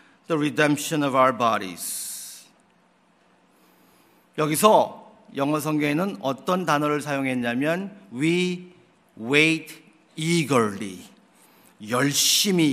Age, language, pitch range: 50-69, Korean, 170-245 Hz